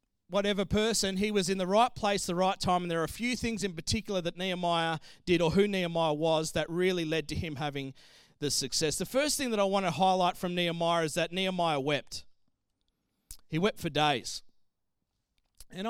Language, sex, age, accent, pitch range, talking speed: English, male, 30-49, Australian, 165-245 Hz, 200 wpm